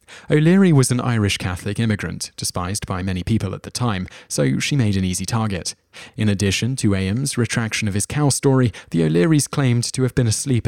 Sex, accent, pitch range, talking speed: male, British, 100-125 Hz, 195 wpm